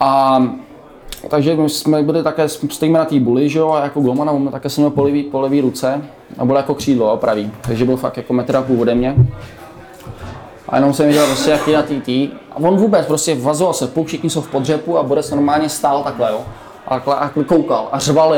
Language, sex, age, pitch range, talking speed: Czech, male, 20-39, 130-155 Hz, 200 wpm